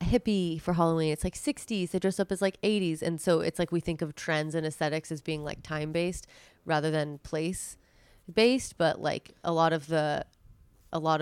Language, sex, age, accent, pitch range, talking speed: English, female, 20-39, American, 155-170 Hz, 205 wpm